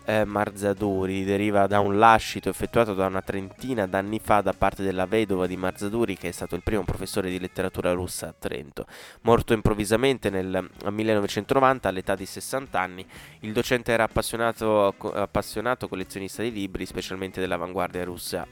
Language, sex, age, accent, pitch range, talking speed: Italian, male, 20-39, native, 95-110 Hz, 150 wpm